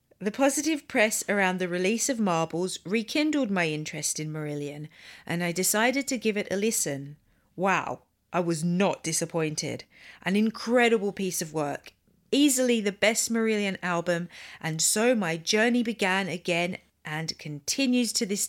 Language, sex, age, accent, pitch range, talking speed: English, female, 40-59, British, 165-215 Hz, 150 wpm